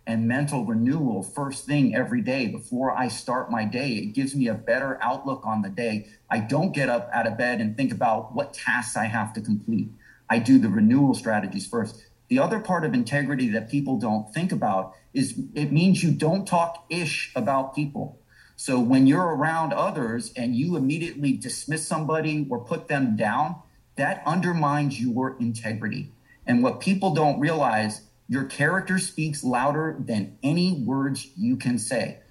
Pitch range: 120-155 Hz